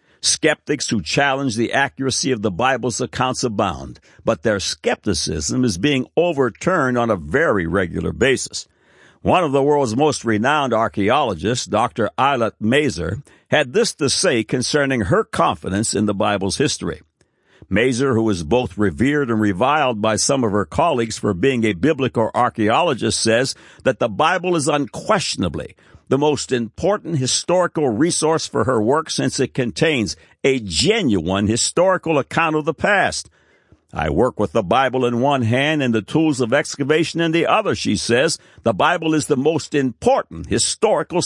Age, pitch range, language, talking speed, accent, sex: 60-79, 110-150 Hz, English, 155 wpm, American, male